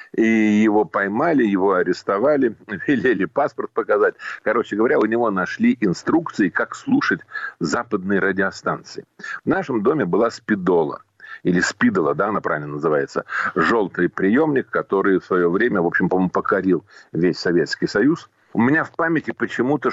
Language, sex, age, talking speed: Russian, male, 50-69, 140 wpm